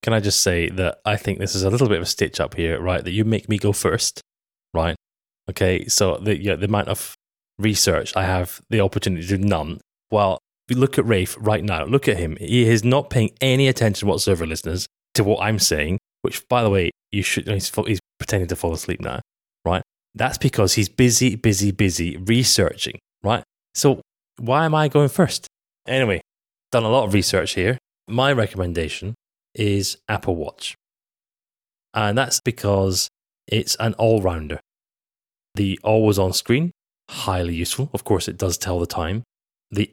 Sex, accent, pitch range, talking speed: male, British, 95-120 Hz, 190 wpm